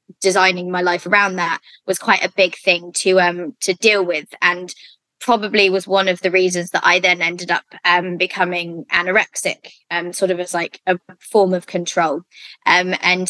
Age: 20-39